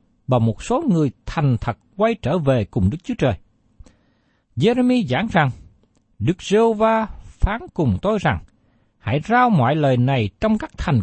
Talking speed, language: 165 wpm, Vietnamese